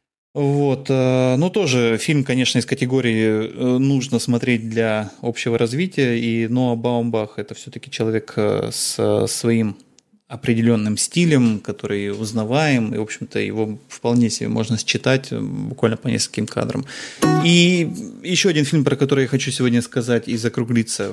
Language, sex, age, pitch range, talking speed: Russian, male, 20-39, 110-130 Hz, 135 wpm